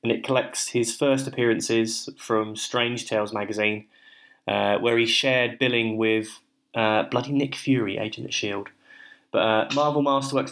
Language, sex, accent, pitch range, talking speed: English, male, British, 110-130 Hz, 155 wpm